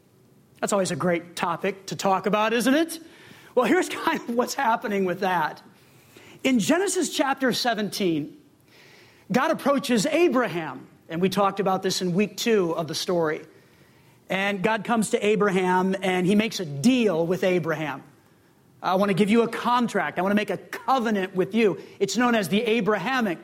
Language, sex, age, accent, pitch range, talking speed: English, male, 40-59, American, 190-240 Hz, 175 wpm